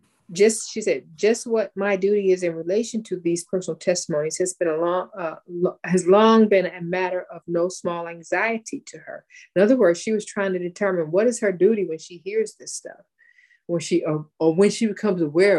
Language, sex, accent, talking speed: English, female, American, 215 wpm